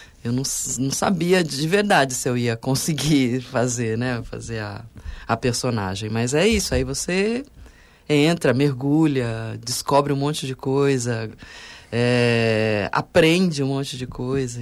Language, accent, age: Portuguese, Brazilian, 20-39